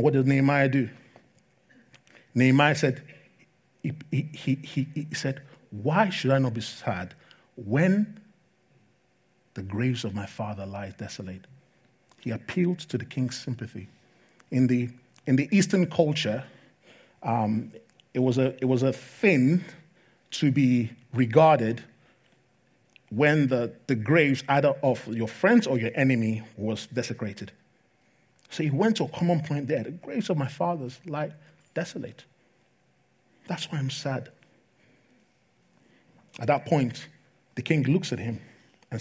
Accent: Nigerian